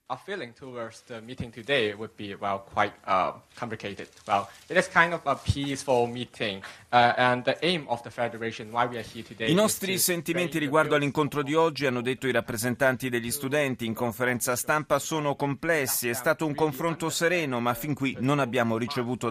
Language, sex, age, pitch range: Italian, male, 30-49, 110-140 Hz